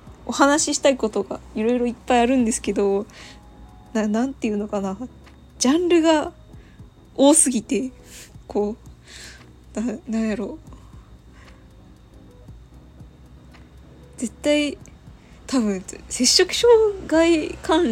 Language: Japanese